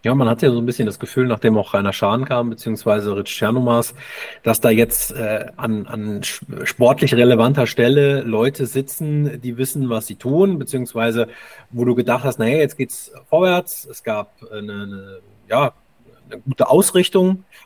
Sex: male